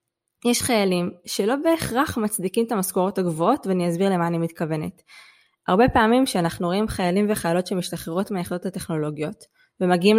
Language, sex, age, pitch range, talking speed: Hebrew, female, 20-39, 175-225 Hz, 135 wpm